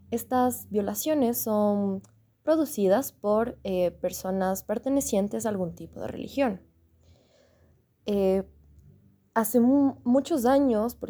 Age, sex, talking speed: 20-39, female, 95 wpm